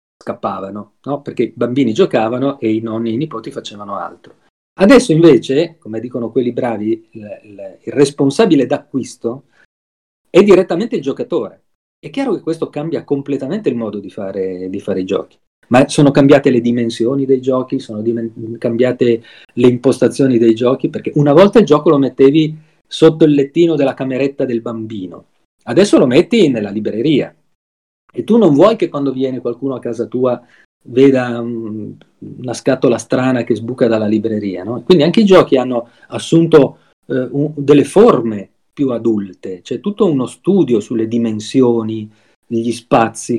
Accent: native